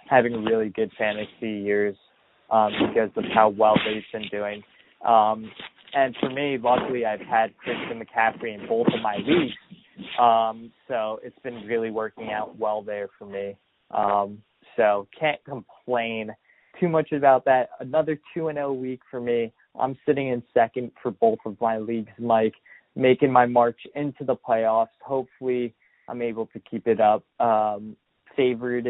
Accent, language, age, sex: American, English, 20-39, male